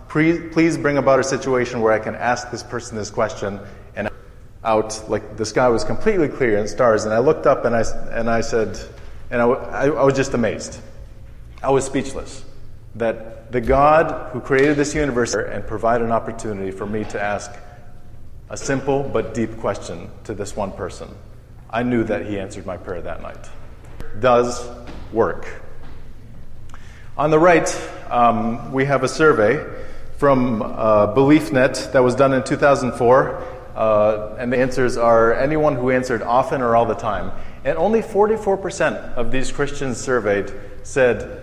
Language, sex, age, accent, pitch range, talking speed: English, male, 30-49, American, 110-135 Hz, 165 wpm